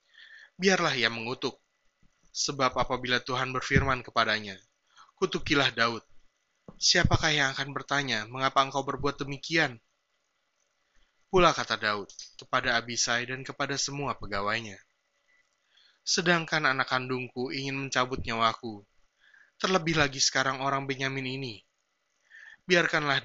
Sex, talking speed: male, 105 wpm